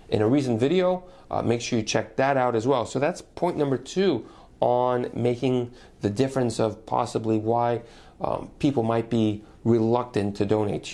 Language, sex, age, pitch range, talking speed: English, male, 40-59, 110-135 Hz, 180 wpm